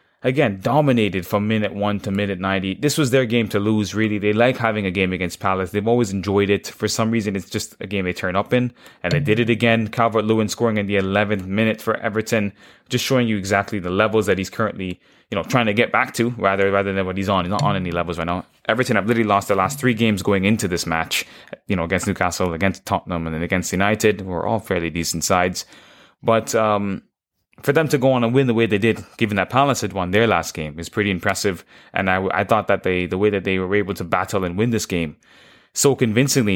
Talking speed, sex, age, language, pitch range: 245 wpm, male, 20-39, English, 95-115 Hz